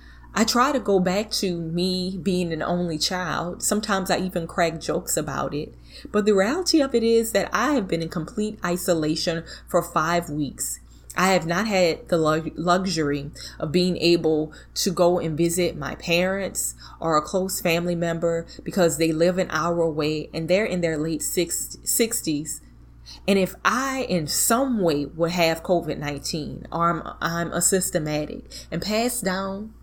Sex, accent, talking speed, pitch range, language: female, American, 165 wpm, 160-195 Hz, English